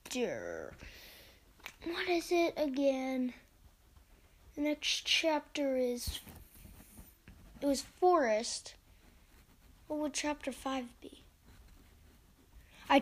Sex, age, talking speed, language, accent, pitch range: female, 20-39, 80 wpm, English, American, 215-310 Hz